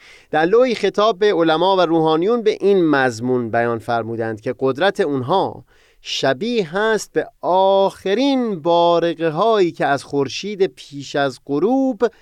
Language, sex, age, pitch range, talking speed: Persian, male, 30-49, 135-210 Hz, 135 wpm